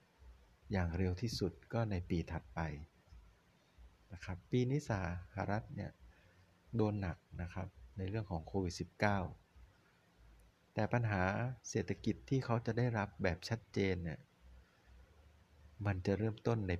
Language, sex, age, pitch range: Thai, male, 60-79, 85-110 Hz